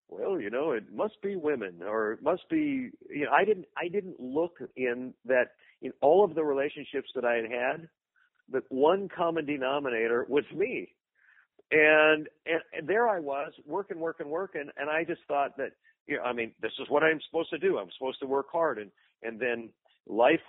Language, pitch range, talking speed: English, 130-185 Hz, 200 wpm